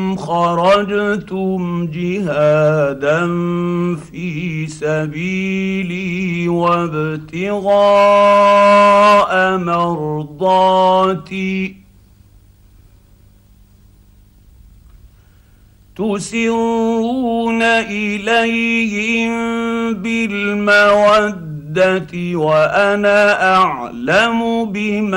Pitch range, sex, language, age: 155-205 Hz, male, Arabic, 50-69